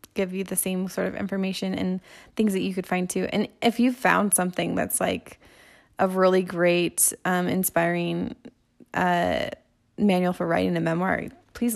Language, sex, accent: English, female, American